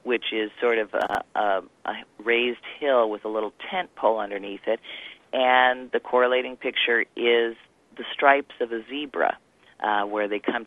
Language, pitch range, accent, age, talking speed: English, 105-125 Hz, American, 40-59, 170 wpm